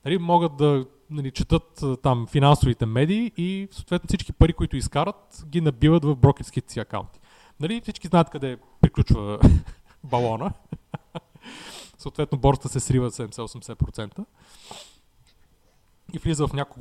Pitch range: 120-160 Hz